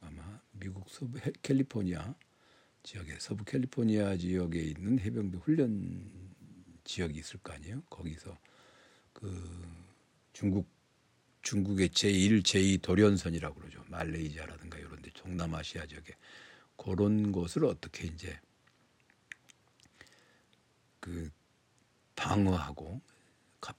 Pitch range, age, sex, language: 85-105 Hz, 60-79, male, Korean